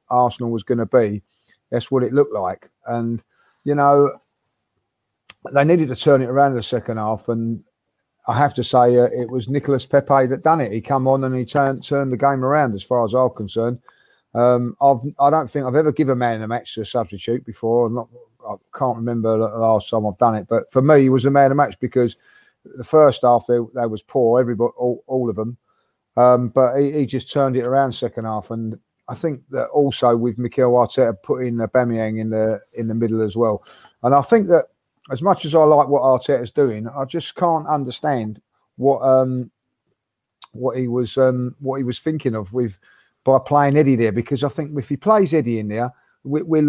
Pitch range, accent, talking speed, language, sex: 115-140 Hz, British, 220 wpm, English, male